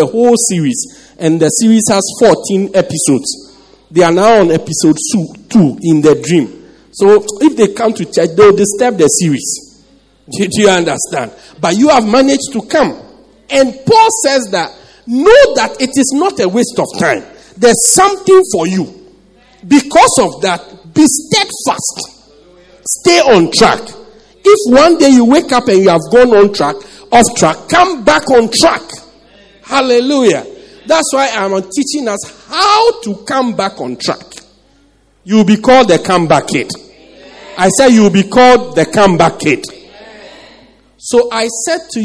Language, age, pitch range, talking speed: English, 50-69, 170-260 Hz, 160 wpm